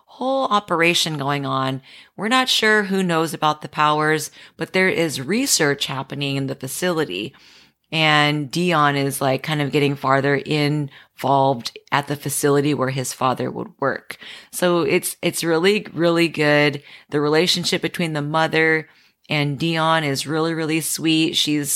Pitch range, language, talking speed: 145-170 Hz, English, 150 wpm